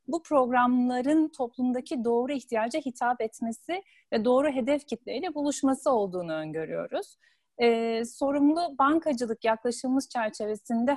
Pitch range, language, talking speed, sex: 225-285 Hz, Turkish, 105 wpm, female